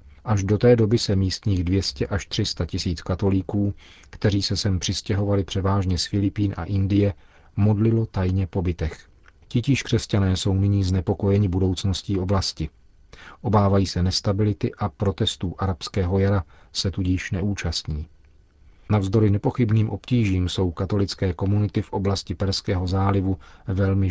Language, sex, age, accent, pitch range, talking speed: Czech, male, 40-59, native, 90-105 Hz, 130 wpm